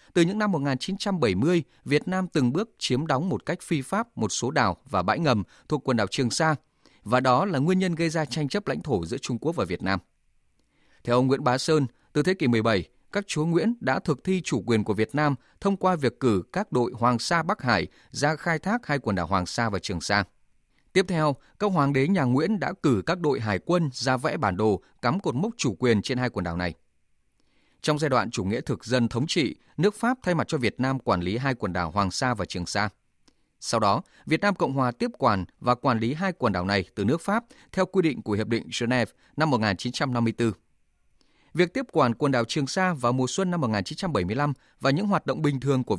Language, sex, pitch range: Vietnamese, male, 115-165 Hz